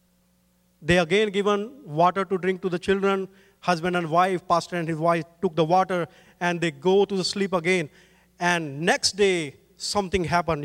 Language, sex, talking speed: English, male, 170 wpm